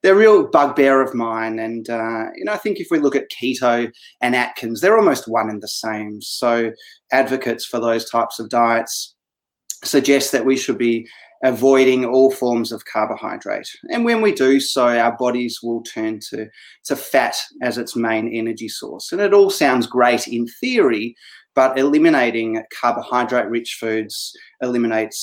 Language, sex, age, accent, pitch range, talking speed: English, male, 30-49, Australian, 115-135 Hz, 170 wpm